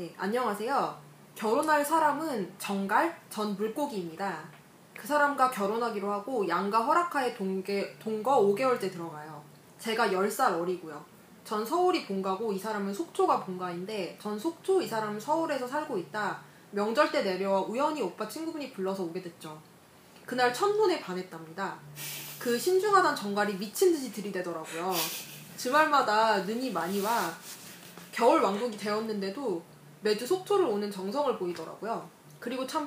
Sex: female